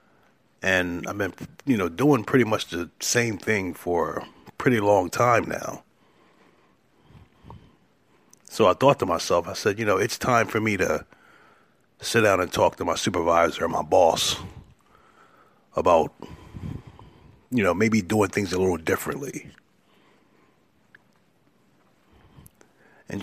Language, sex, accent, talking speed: English, male, American, 130 wpm